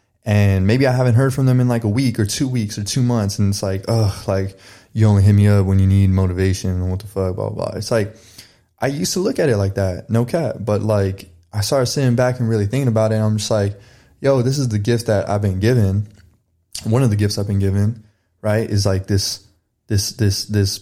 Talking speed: 255 wpm